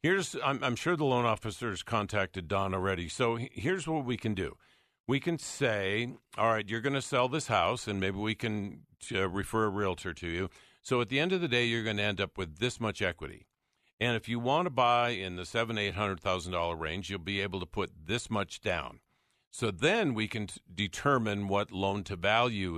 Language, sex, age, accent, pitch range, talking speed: English, male, 50-69, American, 95-120 Hz, 215 wpm